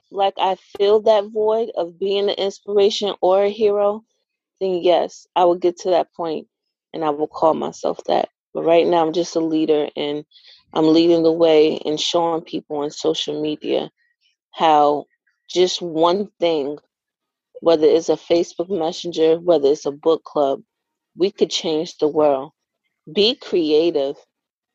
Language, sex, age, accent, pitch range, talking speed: English, female, 30-49, American, 165-215 Hz, 160 wpm